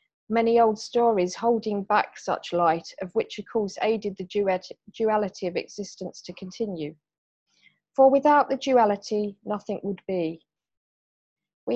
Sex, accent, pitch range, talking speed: female, British, 190-240 Hz, 135 wpm